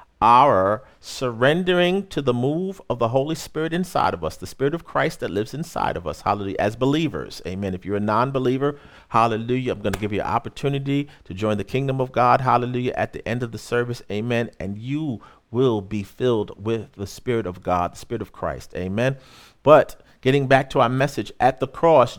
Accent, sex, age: American, male, 40-59